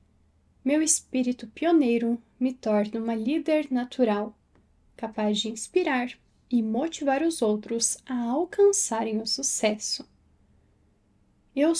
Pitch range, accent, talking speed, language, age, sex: 225-315 Hz, Brazilian, 100 wpm, Portuguese, 10-29, female